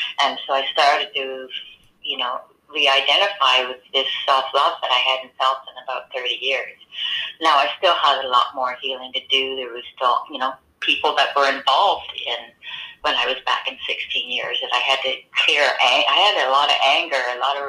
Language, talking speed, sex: English, 205 wpm, female